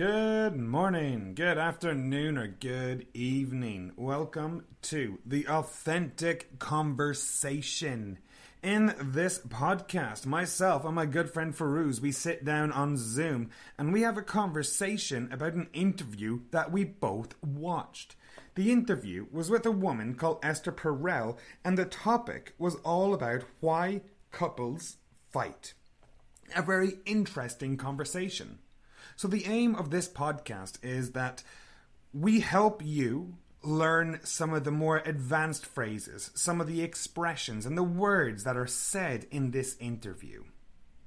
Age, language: 30-49, English